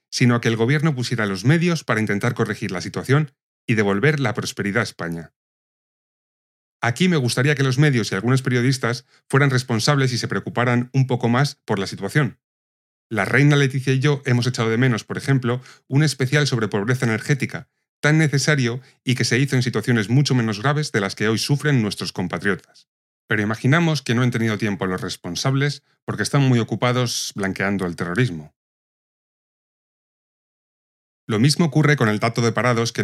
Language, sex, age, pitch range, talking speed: Spanish, male, 30-49, 105-135 Hz, 180 wpm